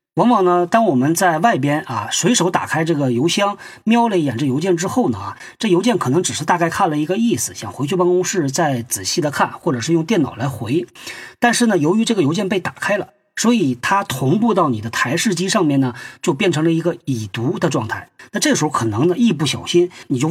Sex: male